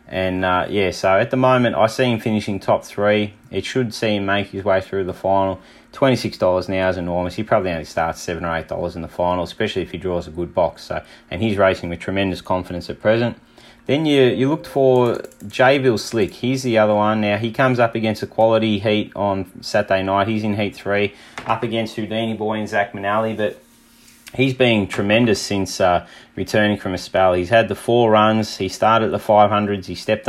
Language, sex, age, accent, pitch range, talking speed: English, male, 30-49, Australian, 95-115 Hz, 215 wpm